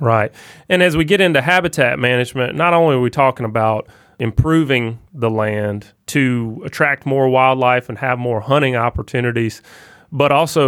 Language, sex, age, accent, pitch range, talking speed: English, male, 30-49, American, 110-135 Hz, 155 wpm